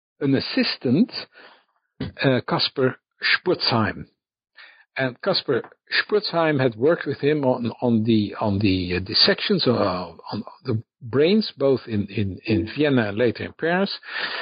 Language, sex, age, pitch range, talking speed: English, male, 60-79, 110-150 Hz, 135 wpm